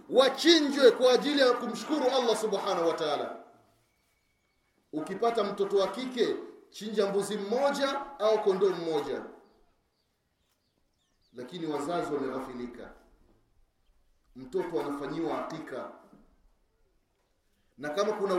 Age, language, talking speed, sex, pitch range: 30-49, Swahili, 90 wpm, male, 230-280 Hz